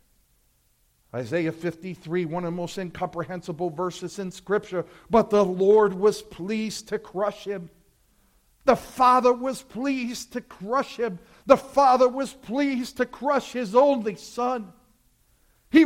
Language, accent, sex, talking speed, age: English, American, male, 130 wpm, 50-69